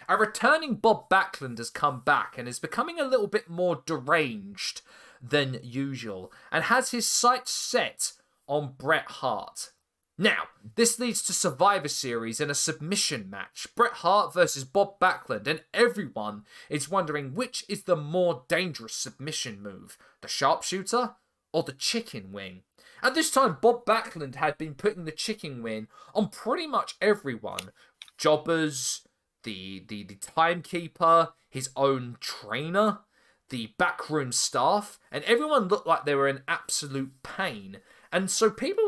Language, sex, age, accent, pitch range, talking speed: English, male, 20-39, British, 135-210 Hz, 145 wpm